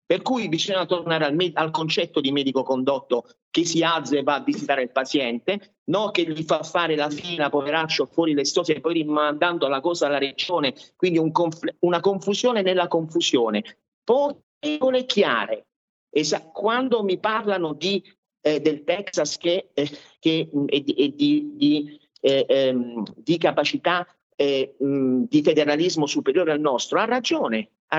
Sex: male